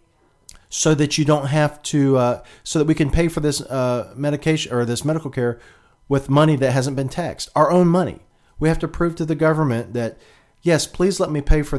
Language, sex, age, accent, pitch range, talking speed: English, male, 40-59, American, 120-150 Hz, 220 wpm